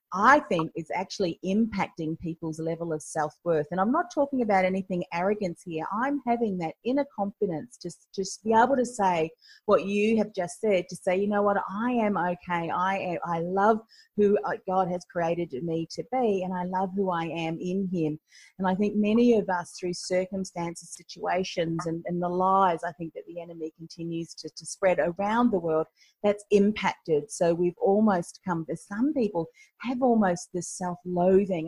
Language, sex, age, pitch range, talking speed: English, female, 40-59, 170-205 Hz, 185 wpm